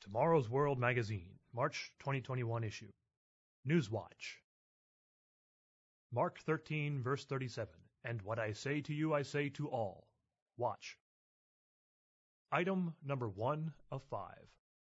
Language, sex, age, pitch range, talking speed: English, male, 30-49, 115-150 Hz, 115 wpm